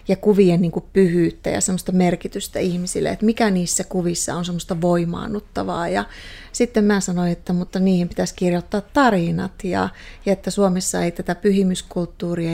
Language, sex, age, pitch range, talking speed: Finnish, female, 30-49, 180-200 Hz, 155 wpm